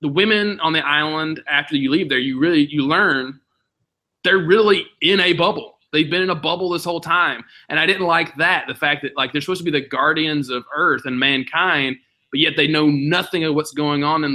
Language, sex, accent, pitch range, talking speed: English, male, American, 135-165 Hz, 230 wpm